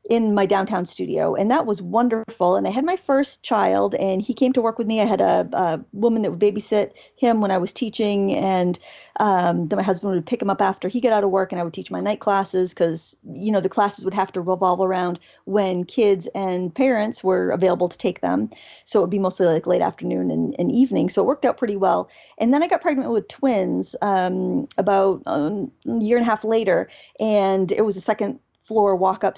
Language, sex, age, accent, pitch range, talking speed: English, female, 40-59, American, 190-225 Hz, 235 wpm